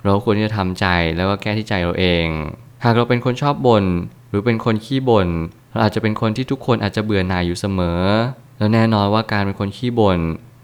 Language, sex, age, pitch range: Thai, male, 20-39, 95-120 Hz